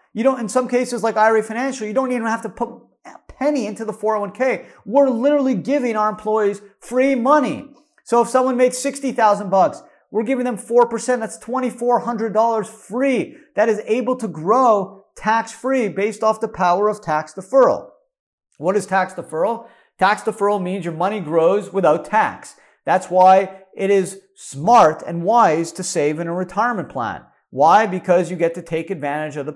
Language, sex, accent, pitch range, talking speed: English, male, American, 175-240 Hz, 175 wpm